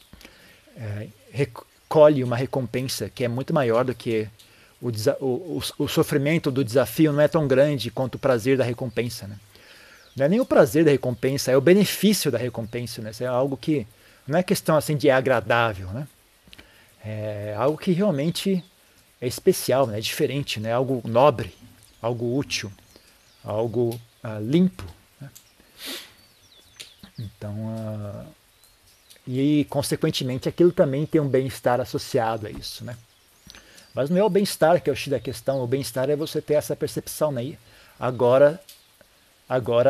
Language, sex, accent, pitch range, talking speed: Portuguese, male, Brazilian, 110-145 Hz, 155 wpm